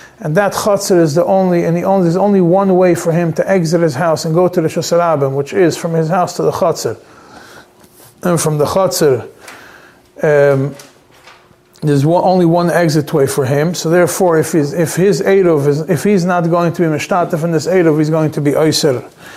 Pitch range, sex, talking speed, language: 155-185 Hz, male, 205 wpm, English